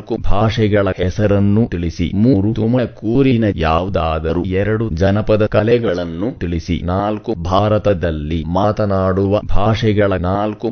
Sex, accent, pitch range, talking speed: male, native, 90-110 Hz, 90 wpm